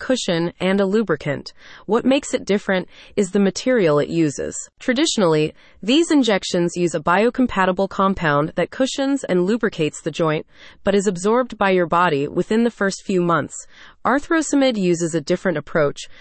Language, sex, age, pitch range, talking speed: English, female, 30-49, 170-230 Hz, 155 wpm